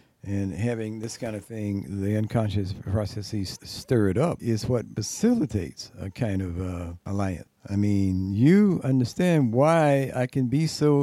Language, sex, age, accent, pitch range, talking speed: English, male, 60-79, American, 100-120 Hz, 160 wpm